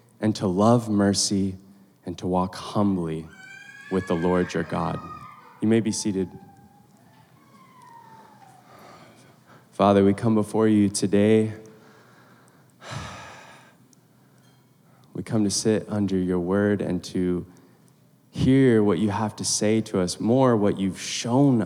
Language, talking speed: English, 120 wpm